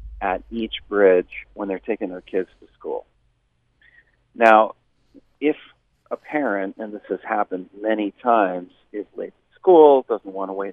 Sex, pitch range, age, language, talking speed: male, 100-110 Hz, 40-59, English, 155 wpm